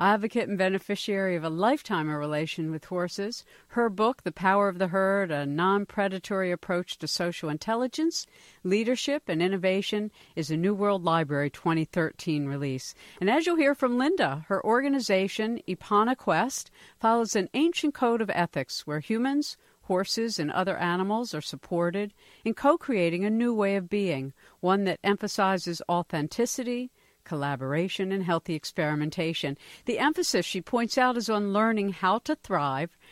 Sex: female